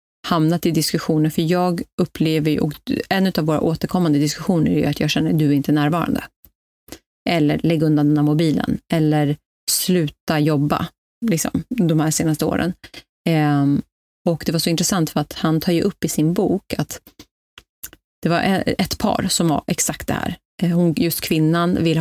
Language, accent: Swedish, native